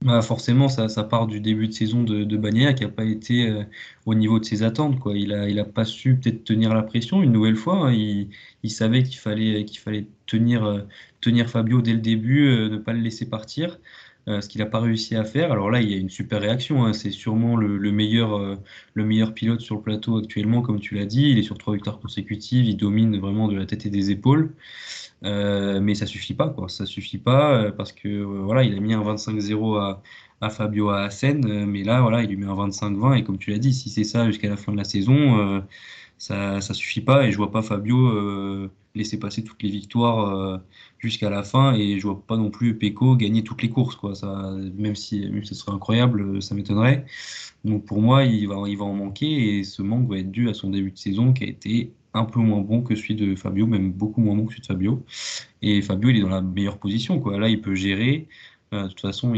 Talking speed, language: 255 wpm, French